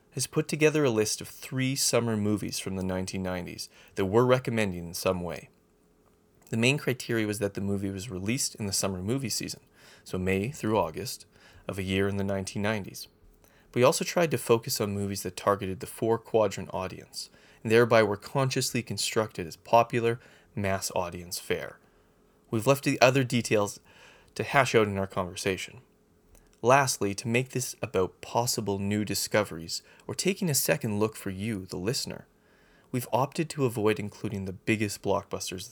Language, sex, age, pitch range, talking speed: English, male, 30-49, 95-125 Hz, 170 wpm